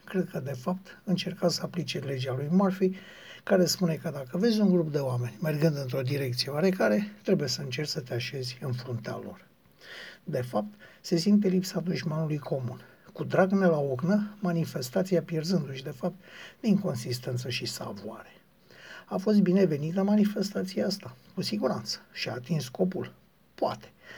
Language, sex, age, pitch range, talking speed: Romanian, male, 60-79, 135-180 Hz, 160 wpm